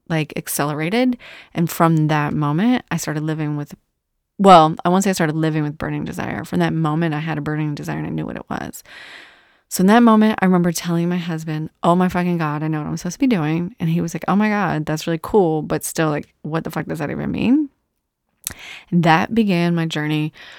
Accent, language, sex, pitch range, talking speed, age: American, English, female, 155-180 Hz, 230 wpm, 30-49